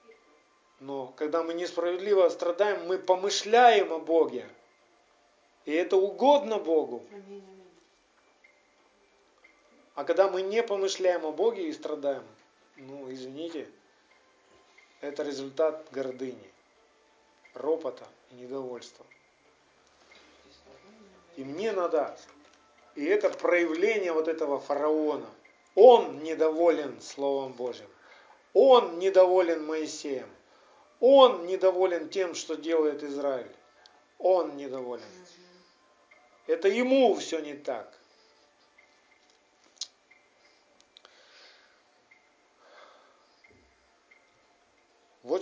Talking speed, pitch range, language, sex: 80 wpm, 150-195 Hz, Russian, male